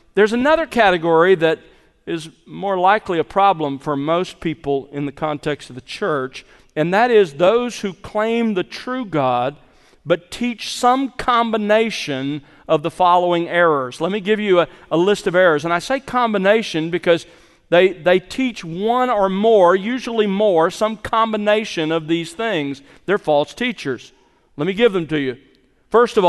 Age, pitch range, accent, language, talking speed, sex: 40-59, 160-215 Hz, American, English, 165 wpm, male